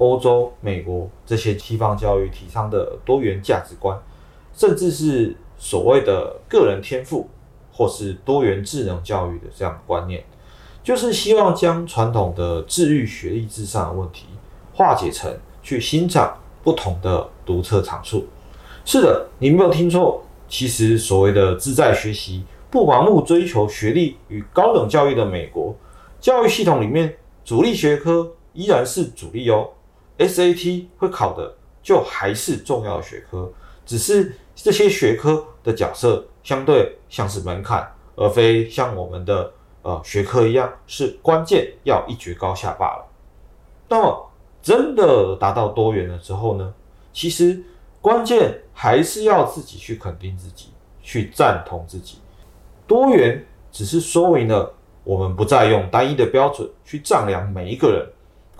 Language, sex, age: Chinese, male, 30-49